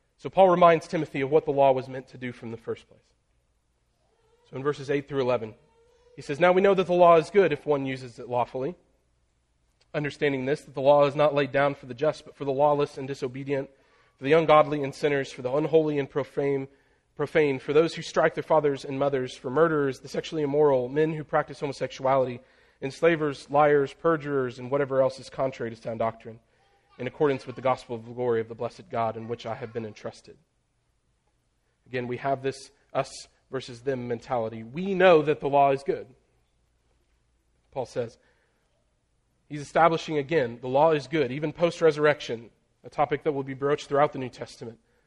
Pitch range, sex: 125-155 Hz, male